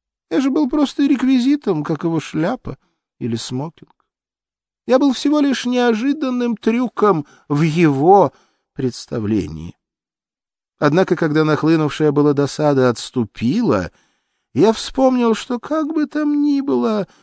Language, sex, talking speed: Russian, male, 115 wpm